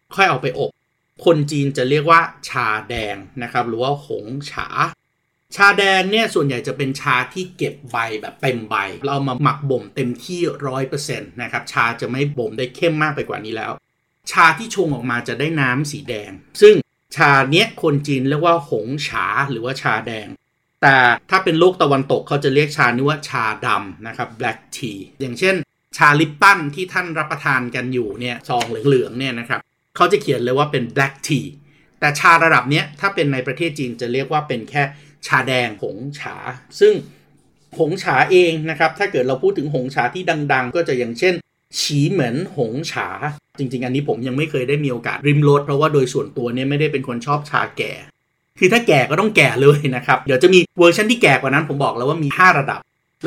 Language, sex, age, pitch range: Thai, male, 30-49, 130-160 Hz